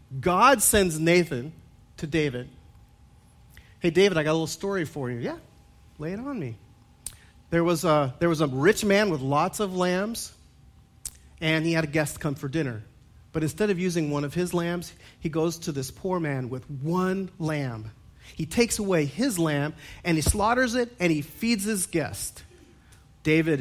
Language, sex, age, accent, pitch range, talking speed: English, male, 40-59, American, 125-175 Hz, 175 wpm